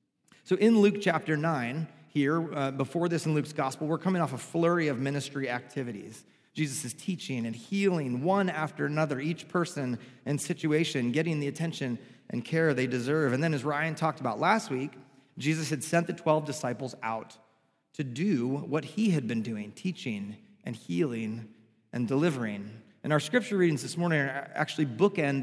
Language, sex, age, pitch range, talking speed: English, male, 30-49, 125-160 Hz, 175 wpm